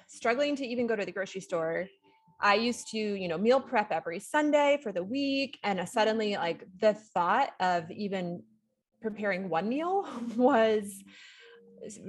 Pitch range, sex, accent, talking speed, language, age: 185-245 Hz, female, American, 160 wpm, English, 30-49